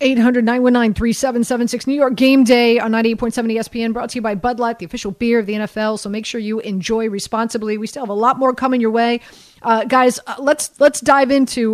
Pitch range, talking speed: 220-250 Hz, 215 wpm